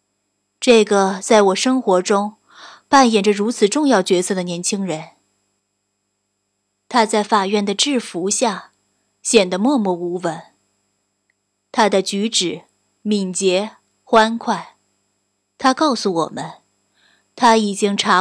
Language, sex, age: Chinese, female, 20-39